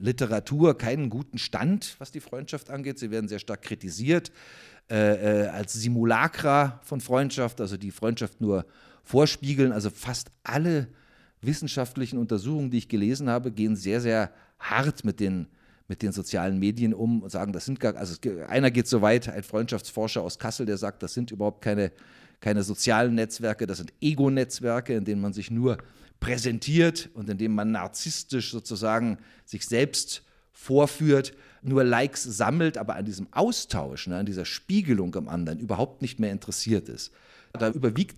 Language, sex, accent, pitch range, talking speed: English, male, German, 105-135 Hz, 160 wpm